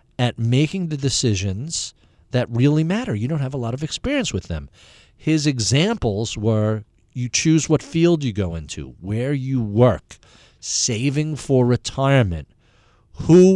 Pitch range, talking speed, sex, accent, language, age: 110-145 Hz, 145 wpm, male, American, English, 50-69